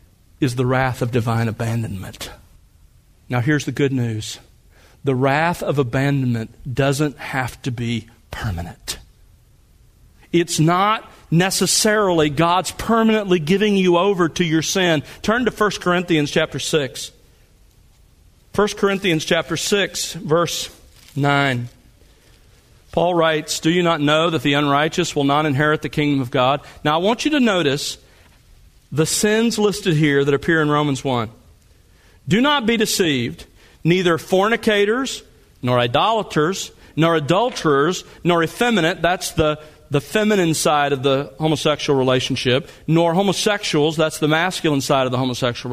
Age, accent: 40-59, American